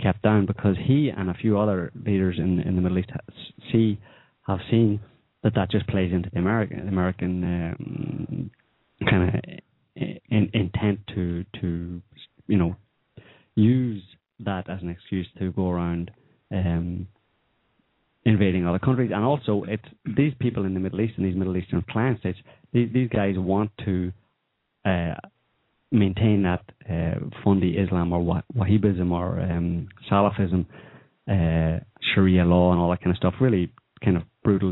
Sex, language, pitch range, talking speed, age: male, English, 90-110 Hz, 160 wpm, 30-49